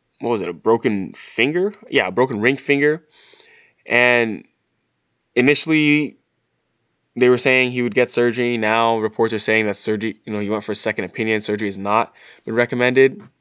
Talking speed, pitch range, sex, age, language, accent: 175 wpm, 100-125 Hz, male, 20-39, English, American